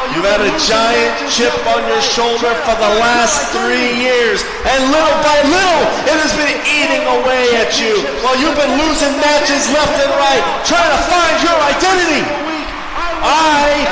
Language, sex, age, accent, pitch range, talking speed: English, male, 40-59, American, 290-335 Hz, 170 wpm